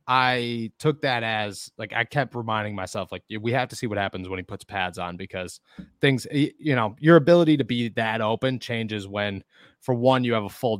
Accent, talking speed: American, 215 wpm